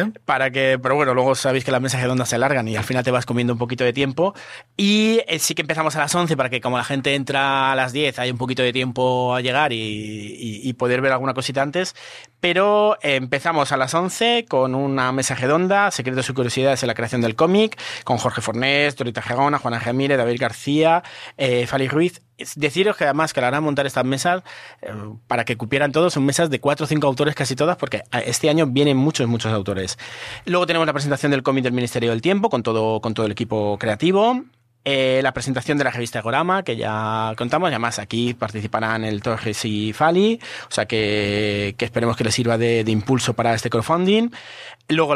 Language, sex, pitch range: Spanish, male, 120-150 Hz